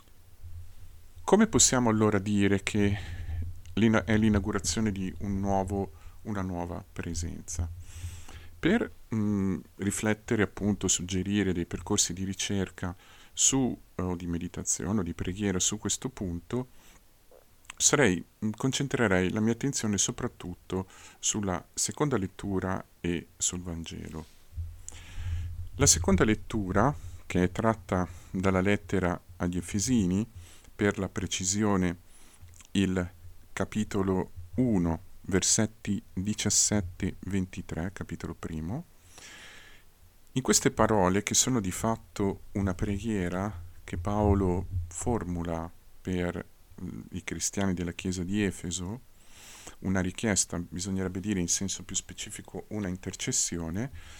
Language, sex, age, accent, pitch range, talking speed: Italian, male, 50-69, native, 85-105 Hz, 95 wpm